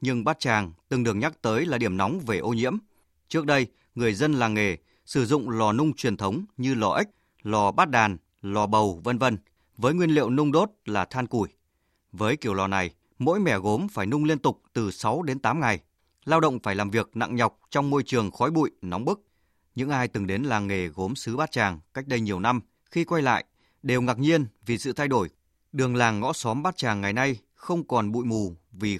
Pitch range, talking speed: 100-140 Hz, 230 wpm